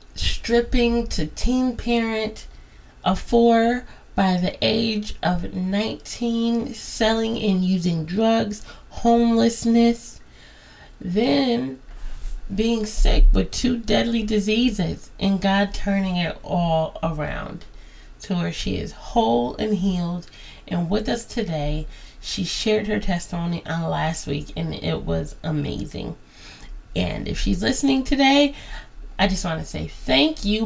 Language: English